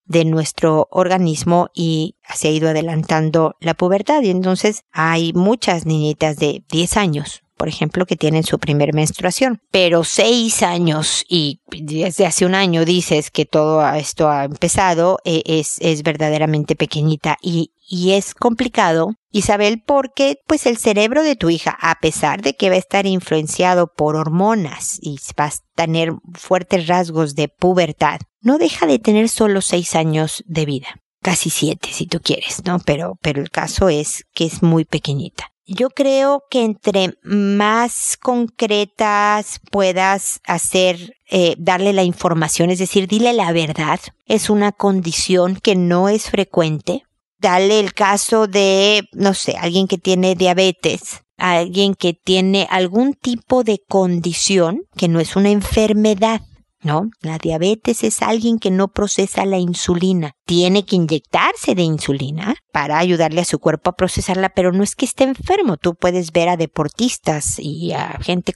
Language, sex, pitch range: Spanish, female, 160-205 Hz